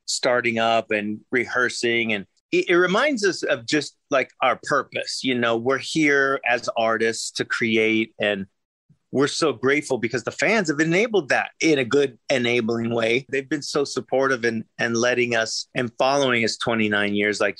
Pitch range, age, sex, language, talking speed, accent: 115-155 Hz, 30-49, male, English, 175 wpm, American